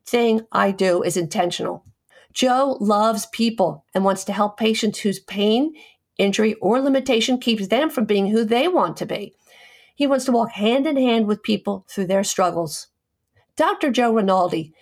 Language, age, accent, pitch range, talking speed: English, 50-69, American, 185-240 Hz, 170 wpm